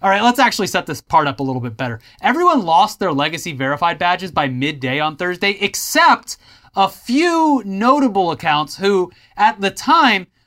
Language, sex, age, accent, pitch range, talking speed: English, male, 30-49, American, 150-245 Hz, 180 wpm